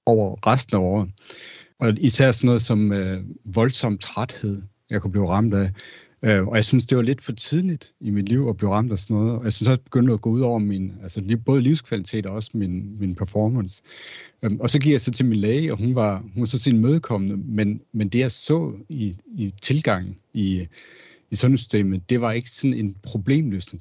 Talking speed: 230 wpm